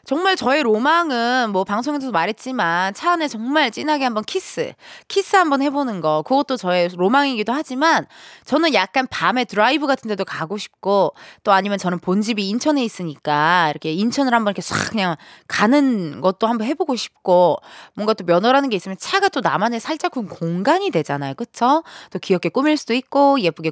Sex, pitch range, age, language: female, 190-285 Hz, 20-39, Korean